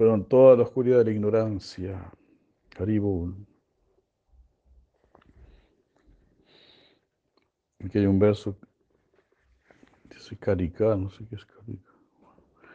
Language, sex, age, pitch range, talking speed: Spanish, male, 60-79, 100-115 Hz, 100 wpm